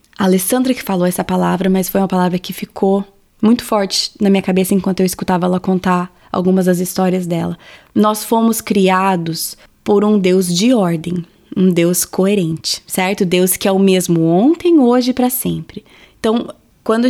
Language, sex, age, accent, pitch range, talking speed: Portuguese, female, 20-39, Brazilian, 190-250 Hz, 175 wpm